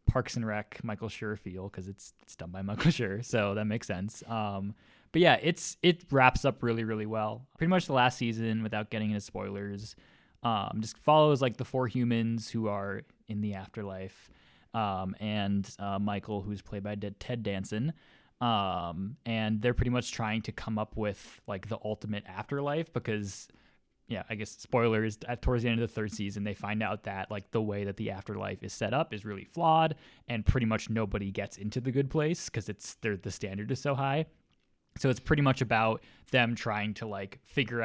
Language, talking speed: English, 200 wpm